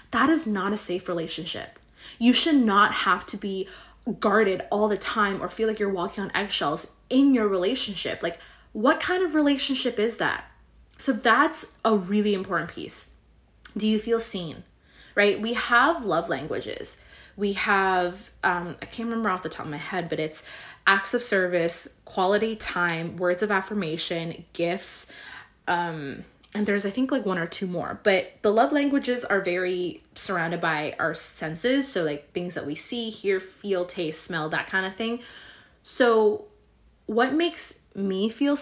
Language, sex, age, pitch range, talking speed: English, female, 20-39, 180-235 Hz, 170 wpm